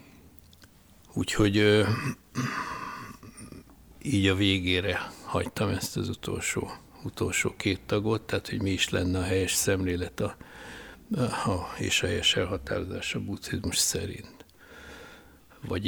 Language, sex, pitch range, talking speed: Hungarian, male, 90-105 Hz, 115 wpm